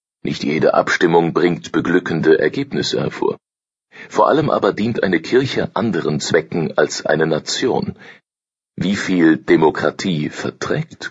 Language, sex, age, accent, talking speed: German, male, 40-59, German, 120 wpm